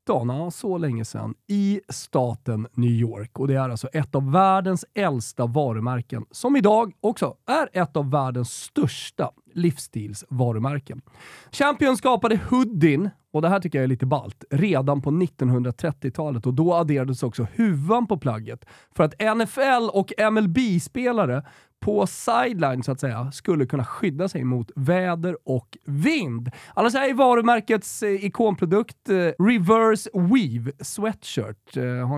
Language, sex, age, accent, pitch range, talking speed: Swedish, male, 30-49, native, 130-195 Hz, 135 wpm